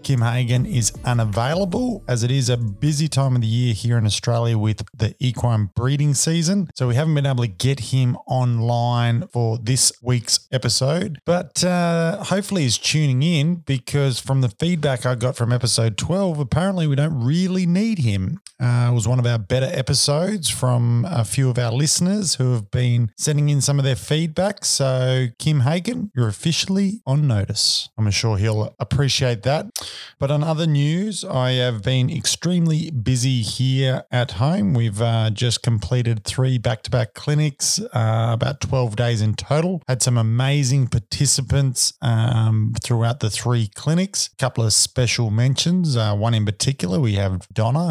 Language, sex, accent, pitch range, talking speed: English, male, Australian, 115-145 Hz, 170 wpm